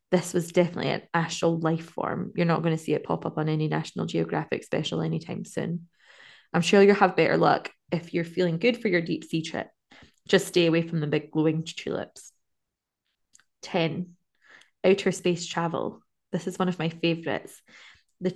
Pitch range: 165-185 Hz